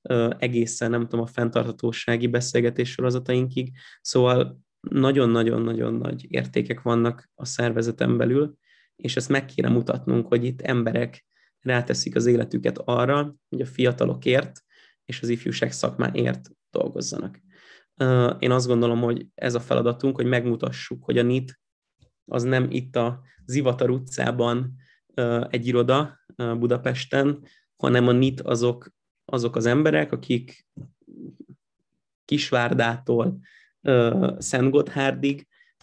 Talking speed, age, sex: 110 wpm, 20-39, male